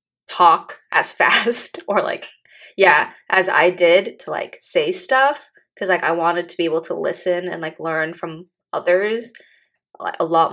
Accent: American